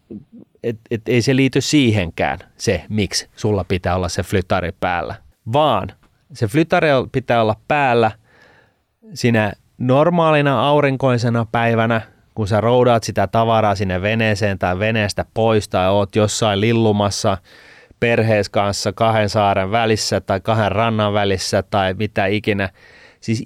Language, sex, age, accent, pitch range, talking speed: Finnish, male, 30-49, native, 100-125 Hz, 135 wpm